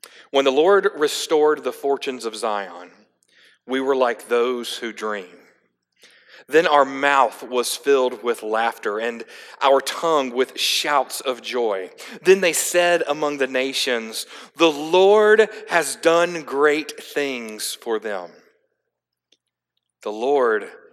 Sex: male